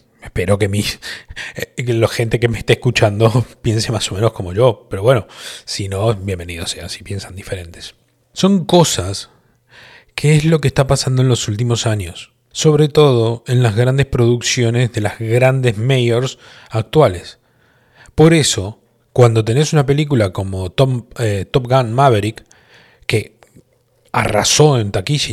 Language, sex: Spanish, male